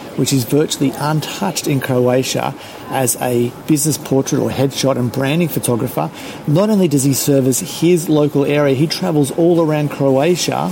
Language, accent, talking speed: English, Australian, 155 wpm